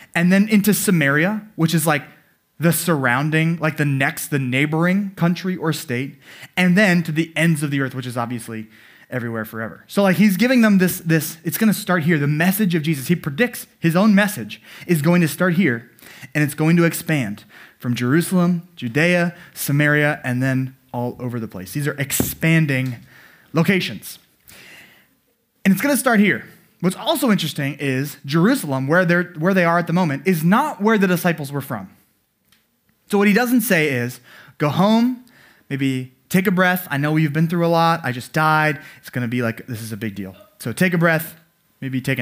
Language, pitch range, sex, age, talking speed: English, 135-180 Hz, male, 20-39, 195 wpm